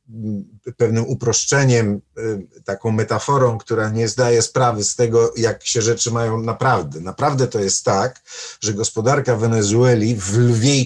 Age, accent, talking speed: 50-69, native, 135 wpm